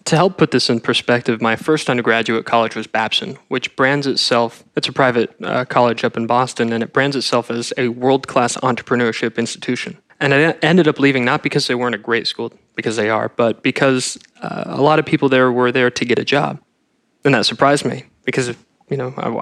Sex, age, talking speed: male, 20-39, 215 wpm